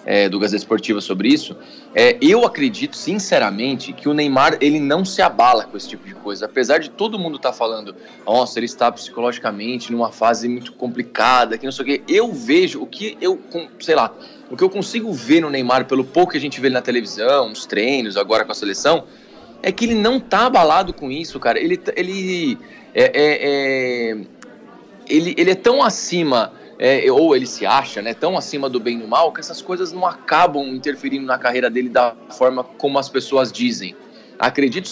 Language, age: Portuguese, 20-39